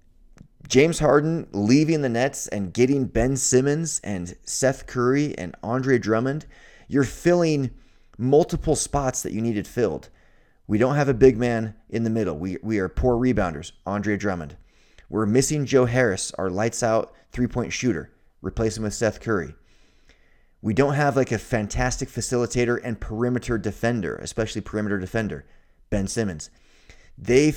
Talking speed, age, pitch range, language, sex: 150 wpm, 30-49, 95-125 Hz, English, male